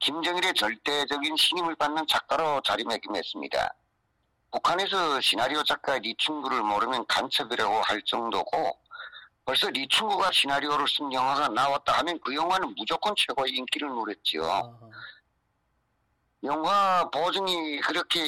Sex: male